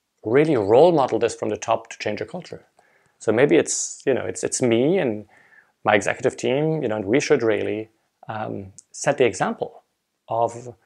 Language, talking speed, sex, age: English, 190 wpm, male, 30-49